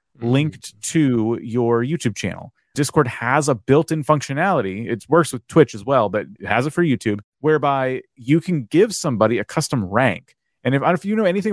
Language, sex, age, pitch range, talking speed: English, male, 30-49, 115-150 Hz, 185 wpm